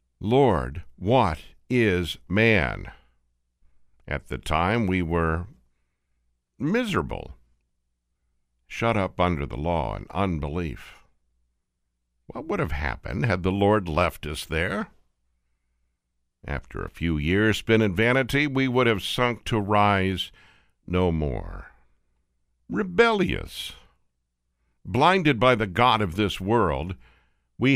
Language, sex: English, male